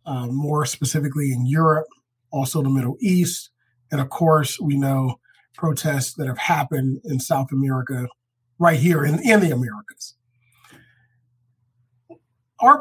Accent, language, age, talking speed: American, English, 40-59, 130 wpm